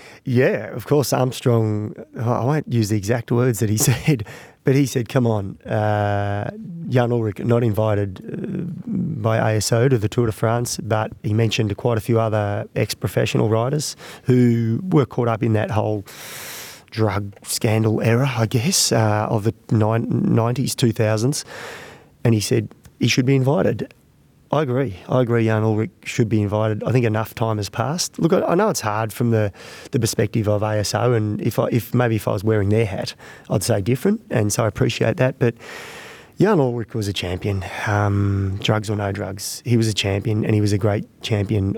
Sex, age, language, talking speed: male, 30-49, English, 185 wpm